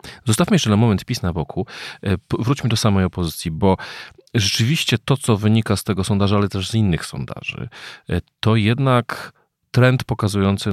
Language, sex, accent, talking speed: Polish, male, native, 155 wpm